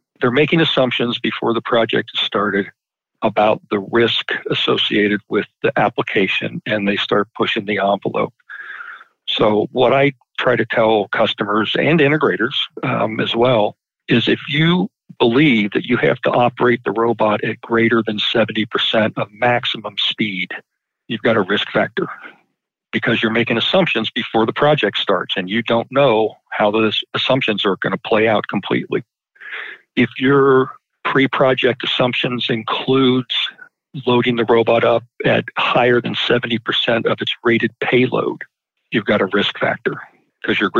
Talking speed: 150 wpm